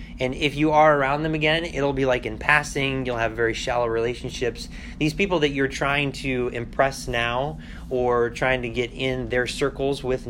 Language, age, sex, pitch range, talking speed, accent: English, 20-39, male, 110-140 Hz, 190 wpm, American